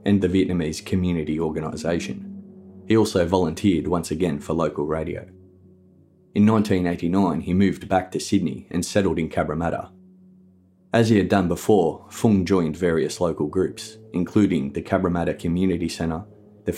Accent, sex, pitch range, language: Australian, male, 85-100 Hz, English